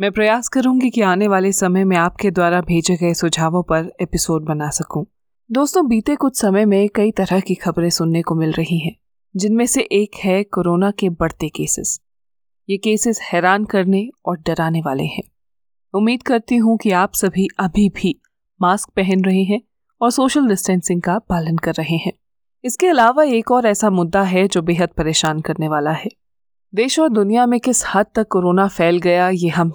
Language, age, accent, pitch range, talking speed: Hindi, 30-49, native, 170-220 Hz, 185 wpm